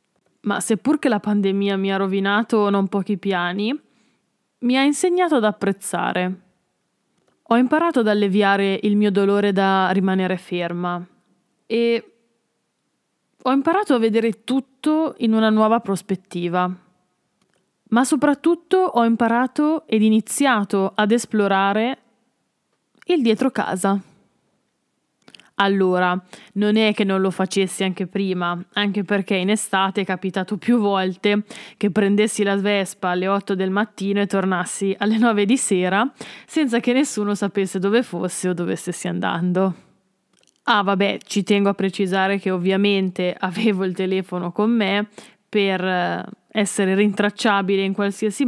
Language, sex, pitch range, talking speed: Italian, female, 190-220 Hz, 130 wpm